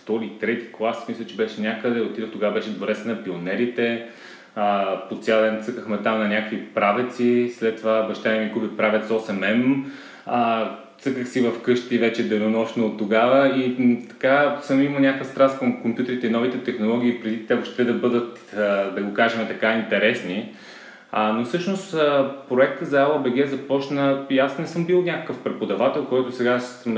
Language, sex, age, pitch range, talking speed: Bulgarian, male, 20-39, 110-130 Hz, 165 wpm